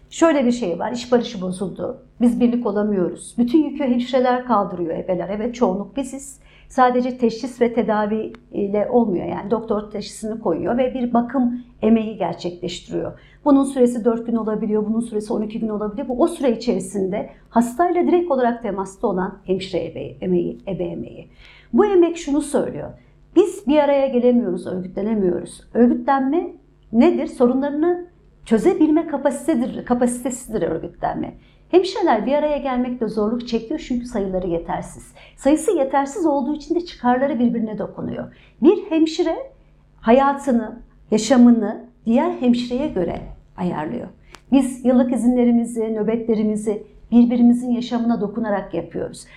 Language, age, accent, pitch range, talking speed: Turkish, 50-69, native, 215-275 Hz, 130 wpm